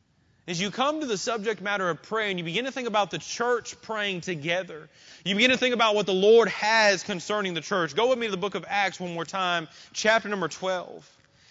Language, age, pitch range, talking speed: English, 30-49, 195-240 Hz, 235 wpm